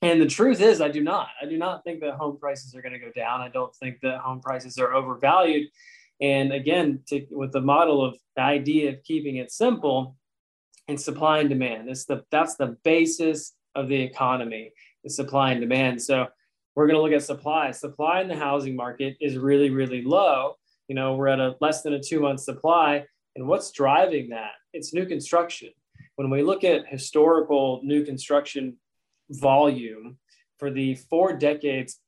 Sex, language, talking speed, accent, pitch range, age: male, English, 185 wpm, American, 135-160 Hz, 20-39